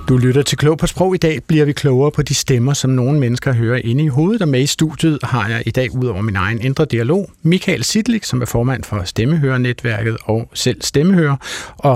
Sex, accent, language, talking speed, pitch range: male, native, Danish, 225 wpm, 115-155 Hz